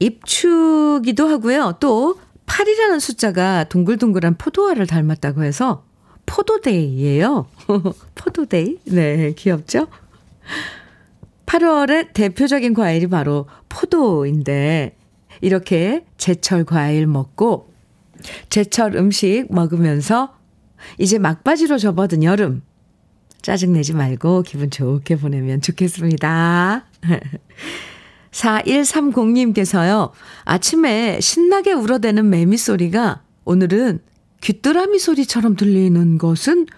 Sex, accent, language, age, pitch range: female, native, Korean, 50-69, 165-240 Hz